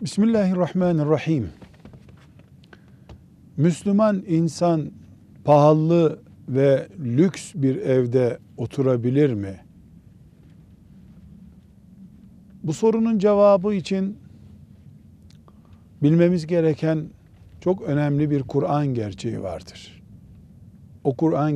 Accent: native